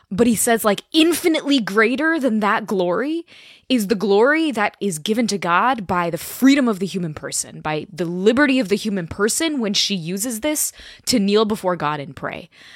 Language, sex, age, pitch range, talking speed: English, female, 20-39, 170-230 Hz, 195 wpm